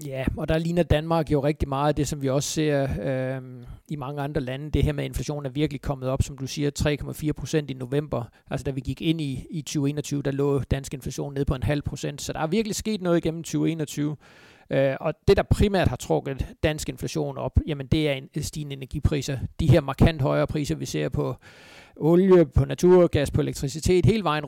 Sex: male